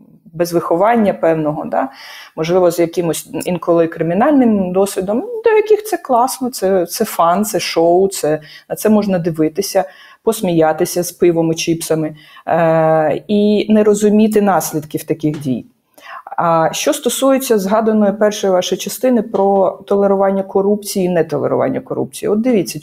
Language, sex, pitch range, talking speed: Ukrainian, female, 170-215 Hz, 135 wpm